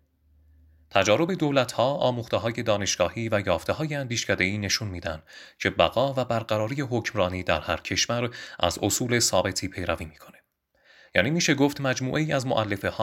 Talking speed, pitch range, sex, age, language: 140 wpm, 90-130 Hz, male, 30-49, Persian